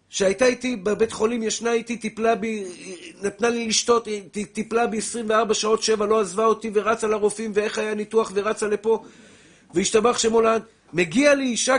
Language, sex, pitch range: Hebrew, male, 215-260 Hz